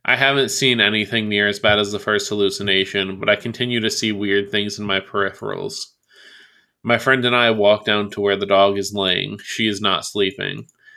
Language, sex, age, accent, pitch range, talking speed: English, male, 20-39, American, 100-125 Hz, 200 wpm